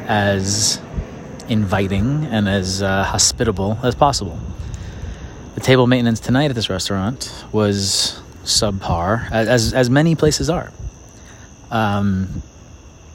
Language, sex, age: English, male, 30-49